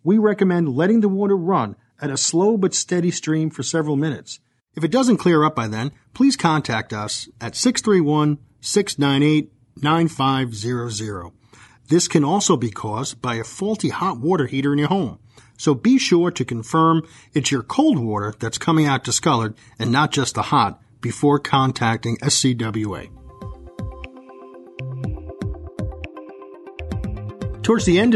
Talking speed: 140 wpm